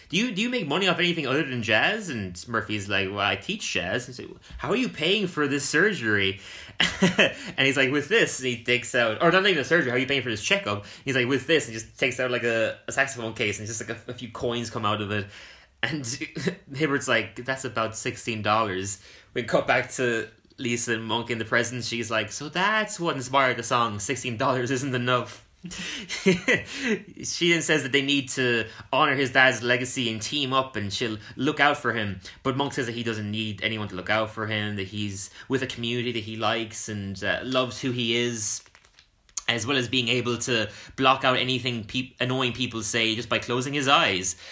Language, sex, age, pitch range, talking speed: English, male, 20-39, 110-135 Hz, 220 wpm